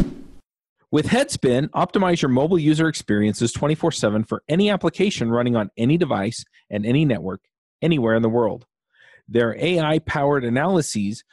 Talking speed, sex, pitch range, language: 130 wpm, male, 115-155 Hz, English